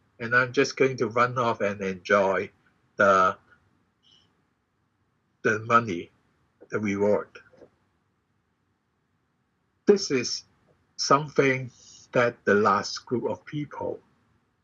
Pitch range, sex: 115-145 Hz, male